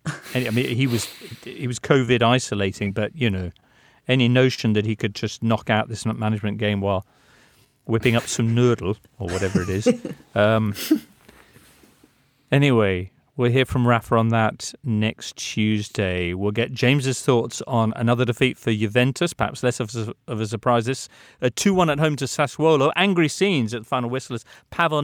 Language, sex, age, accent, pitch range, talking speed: English, male, 40-59, British, 110-140 Hz, 175 wpm